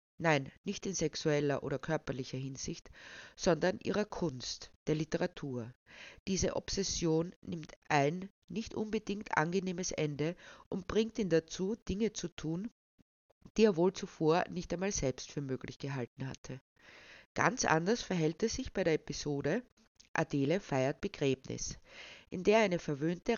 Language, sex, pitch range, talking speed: German, female, 150-205 Hz, 135 wpm